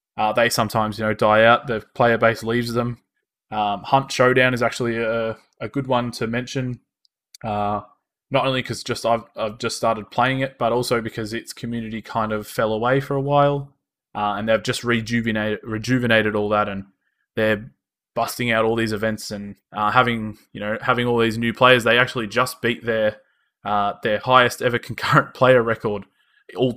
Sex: male